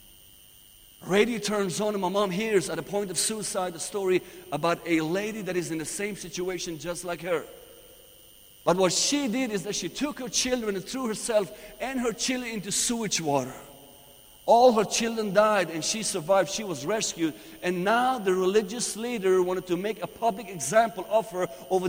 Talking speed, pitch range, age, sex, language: 190 wpm, 170-220 Hz, 50-69, male, English